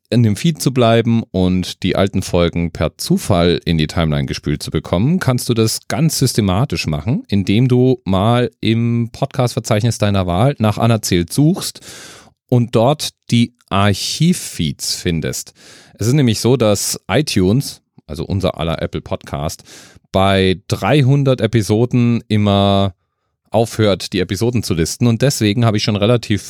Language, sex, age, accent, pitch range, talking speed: German, male, 40-59, German, 90-120 Hz, 145 wpm